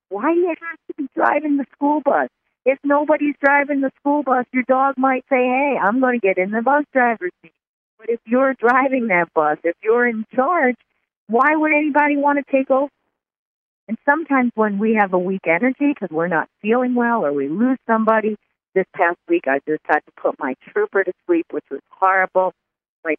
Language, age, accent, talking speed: English, 50-69, American, 205 wpm